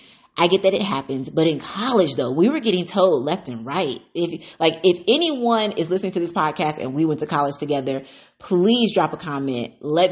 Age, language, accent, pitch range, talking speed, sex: 30-49, English, American, 140-180 Hz, 215 wpm, female